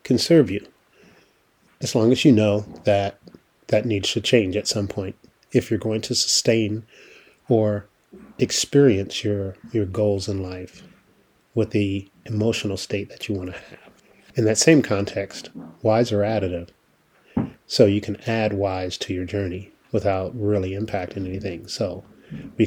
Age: 30-49